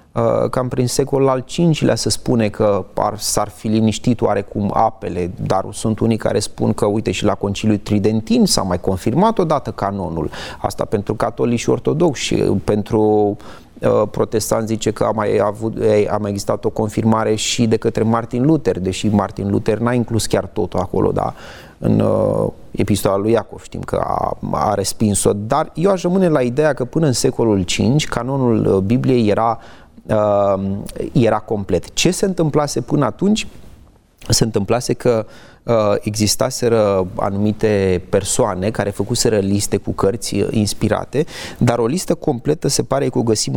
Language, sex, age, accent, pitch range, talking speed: Romanian, male, 30-49, native, 100-125 Hz, 160 wpm